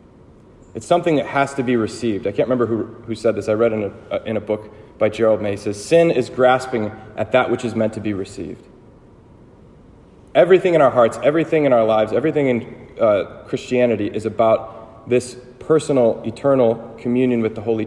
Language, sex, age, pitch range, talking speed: English, male, 30-49, 110-130 Hz, 195 wpm